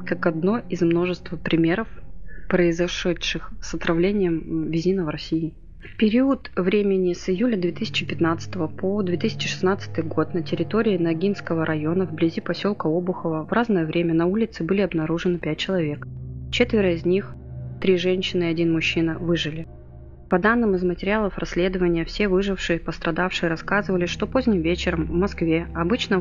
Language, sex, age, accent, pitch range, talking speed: Russian, female, 20-39, native, 165-195 Hz, 140 wpm